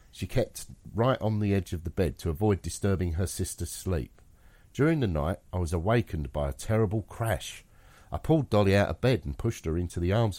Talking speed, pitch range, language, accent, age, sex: 215 wpm, 85-110 Hz, English, British, 50-69, male